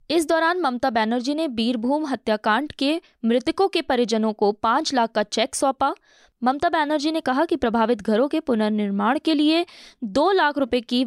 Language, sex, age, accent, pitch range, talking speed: Hindi, female, 20-39, native, 225-300 Hz, 175 wpm